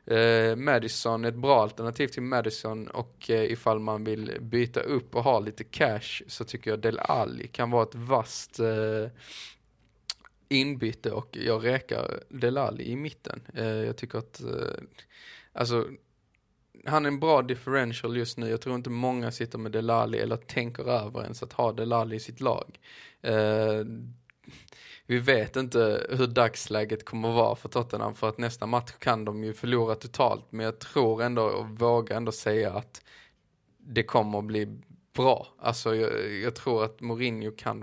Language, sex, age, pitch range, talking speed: Swedish, male, 20-39, 110-120 Hz, 170 wpm